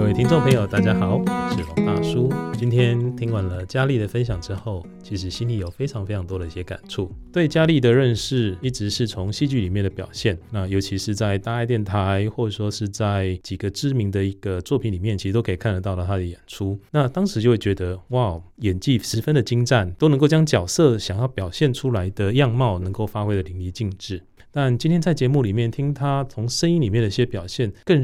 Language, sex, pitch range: Chinese, male, 95-125 Hz